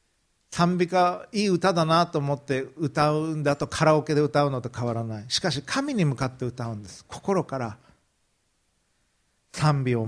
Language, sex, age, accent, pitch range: Japanese, male, 40-59, native, 125-175 Hz